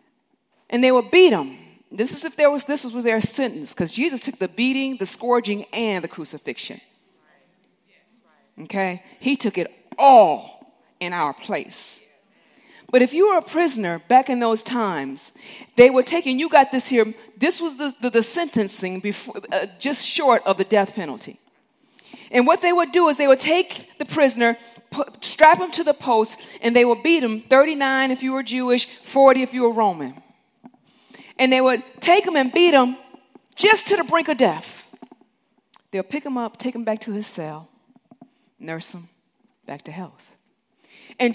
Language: English